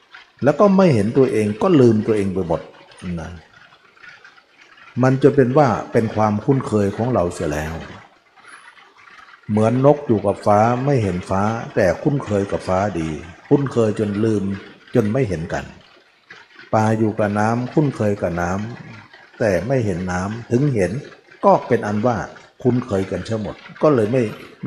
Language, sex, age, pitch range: Thai, male, 60-79, 95-125 Hz